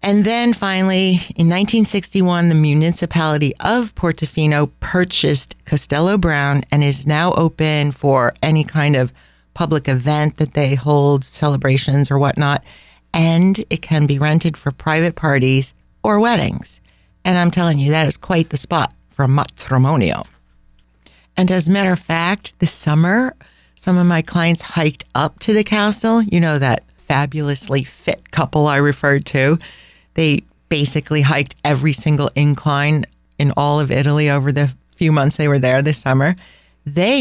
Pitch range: 140-175 Hz